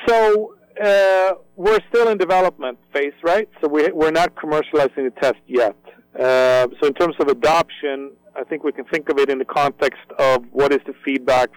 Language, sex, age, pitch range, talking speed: English, male, 40-59, 125-190 Hz, 190 wpm